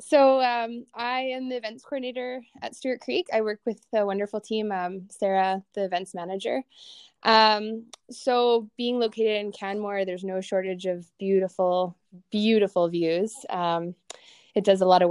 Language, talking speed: English, 160 wpm